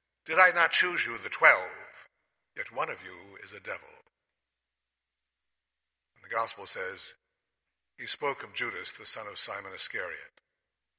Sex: male